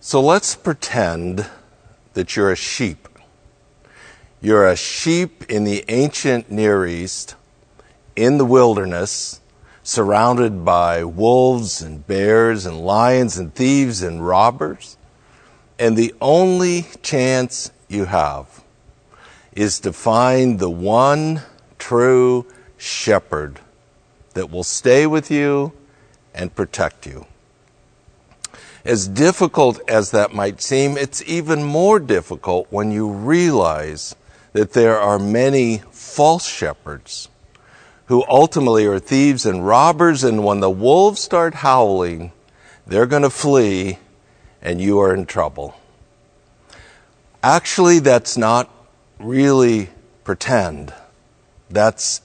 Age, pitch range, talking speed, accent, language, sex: 60-79, 100-135 Hz, 110 wpm, American, English, male